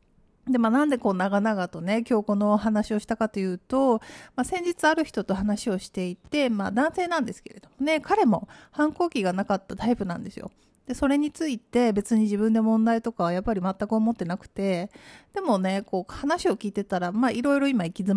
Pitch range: 195-255 Hz